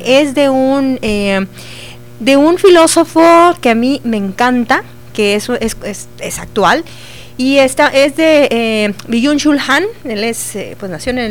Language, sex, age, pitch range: Spanish, female, 40-59, 215-270 Hz